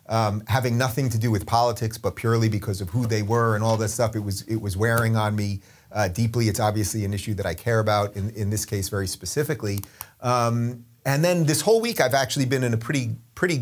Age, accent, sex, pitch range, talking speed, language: 30-49, American, male, 100-125 Hz, 240 wpm, English